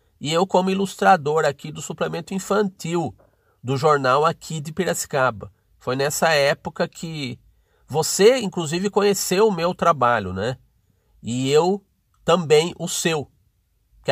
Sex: male